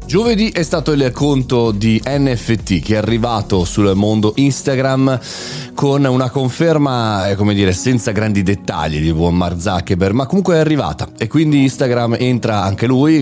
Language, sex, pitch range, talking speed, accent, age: Italian, male, 100-135 Hz, 160 wpm, native, 30-49